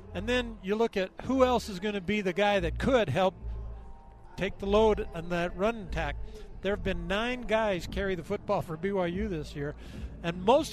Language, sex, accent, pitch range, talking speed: English, male, American, 185-225 Hz, 205 wpm